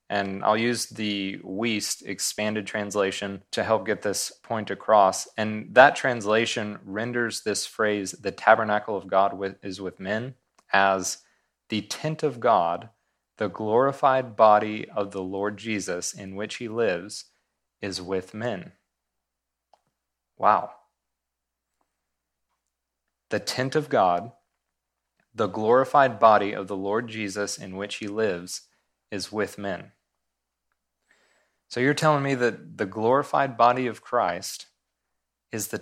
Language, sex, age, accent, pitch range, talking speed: English, male, 30-49, American, 95-125 Hz, 125 wpm